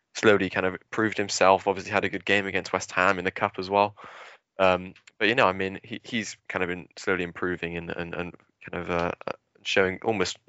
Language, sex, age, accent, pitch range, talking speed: English, male, 10-29, British, 90-100 Hz, 225 wpm